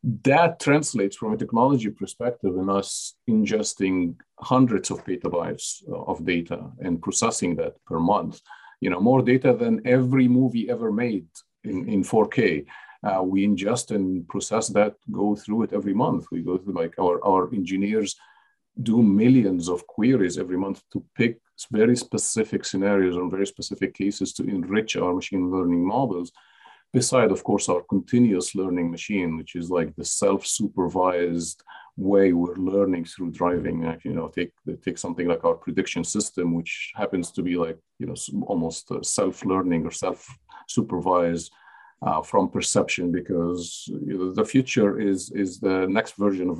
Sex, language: male, English